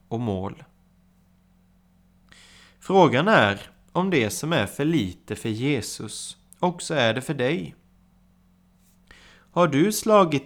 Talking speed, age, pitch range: 115 wpm, 30-49, 95-135 Hz